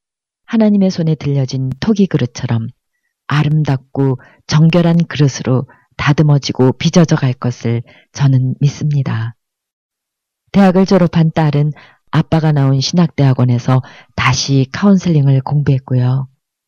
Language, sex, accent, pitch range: Korean, female, native, 130-170 Hz